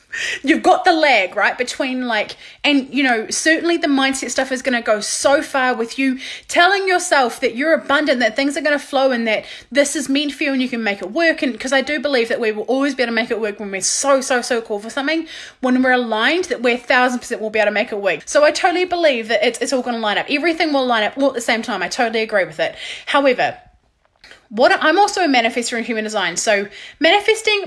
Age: 20-39